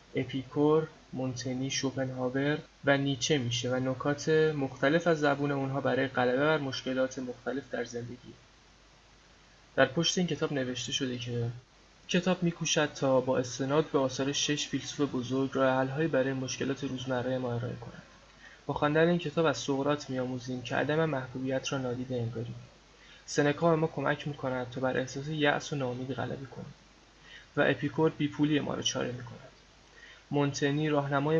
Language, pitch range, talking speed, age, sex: Persian, 130-145 Hz, 145 wpm, 20-39, male